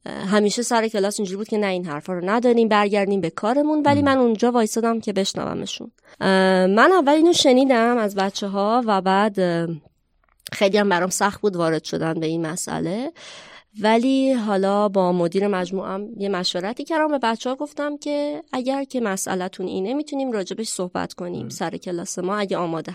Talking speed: 170 wpm